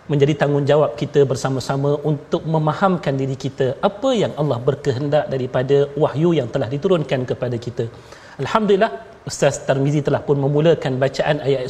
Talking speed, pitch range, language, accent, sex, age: 140 wpm, 150-200 Hz, Malayalam, Indonesian, male, 40-59